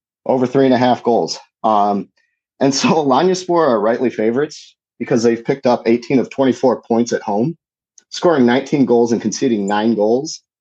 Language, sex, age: English, male, 30-49